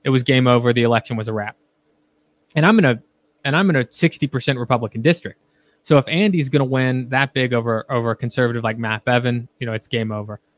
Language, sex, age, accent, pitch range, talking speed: English, male, 20-39, American, 115-135 Hz, 220 wpm